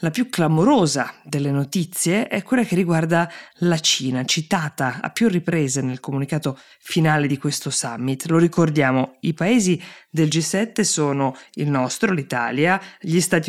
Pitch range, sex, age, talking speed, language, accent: 135-180 Hz, female, 20-39, 145 wpm, Italian, native